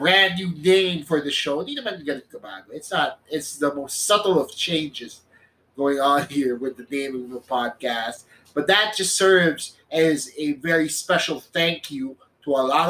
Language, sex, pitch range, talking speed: English, male, 140-180 Hz, 165 wpm